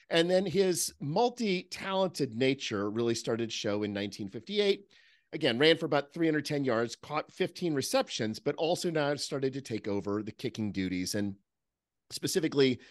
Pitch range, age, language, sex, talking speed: 110-160 Hz, 40-59, English, male, 150 wpm